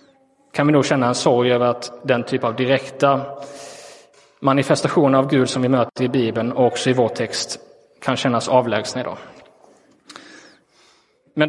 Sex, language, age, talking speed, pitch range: male, Swedish, 20-39, 150 wpm, 120-145 Hz